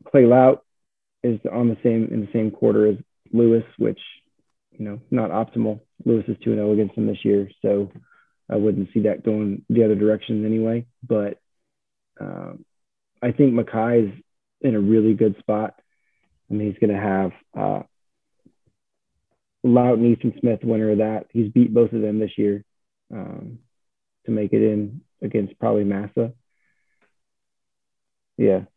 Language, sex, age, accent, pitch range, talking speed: English, male, 30-49, American, 105-120 Hz, 155 wpm